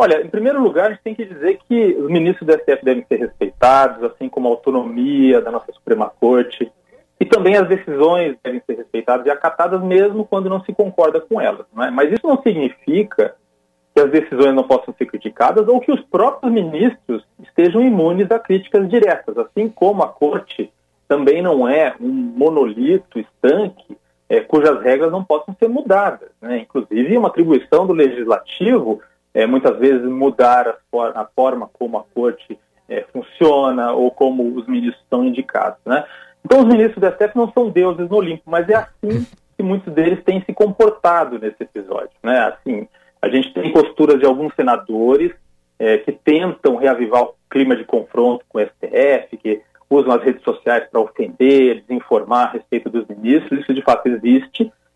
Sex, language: male, Portuguese